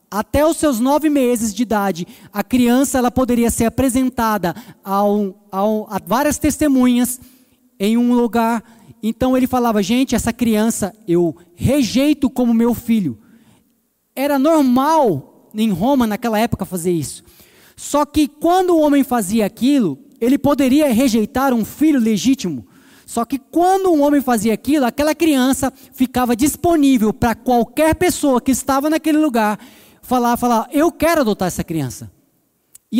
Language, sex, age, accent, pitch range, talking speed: Portuguese, male, 20-39, Brazilian, 220-285 Hz, 140 wpm